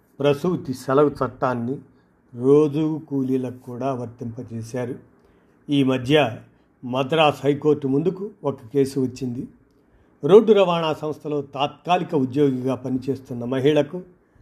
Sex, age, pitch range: male, 50-69, 130-150 Hz